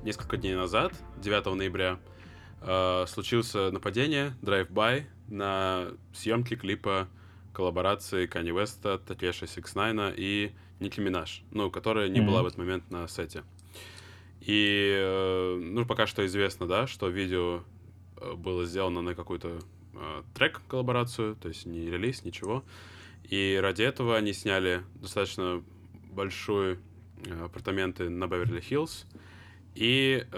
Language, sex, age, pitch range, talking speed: Russian, male, 20-39, 90-105 Hz, 115 wpm